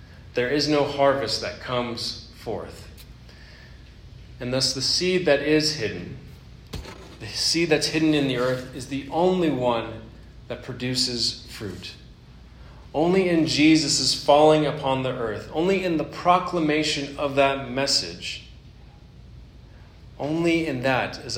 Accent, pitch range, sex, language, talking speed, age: American, 120-150 Hz, male, English, 130 wpm, 30-49